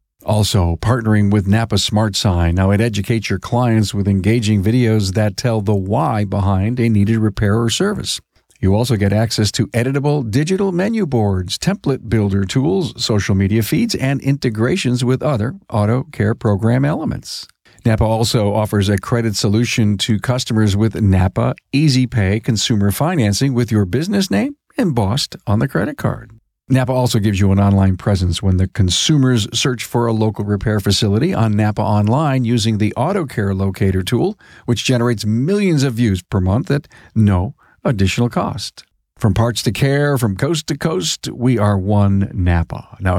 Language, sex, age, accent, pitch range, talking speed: English, male, 50-69, American, 105-125 Hz, 165 wpm